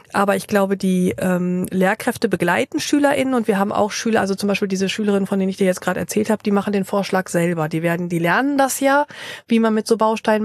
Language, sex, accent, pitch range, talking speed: German, female, German, 190-215 Hz, 240 wpm